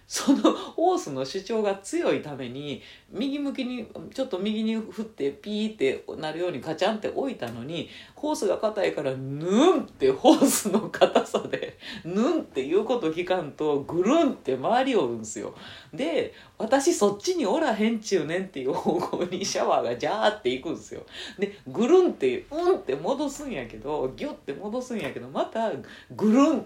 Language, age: Japanese, 40-59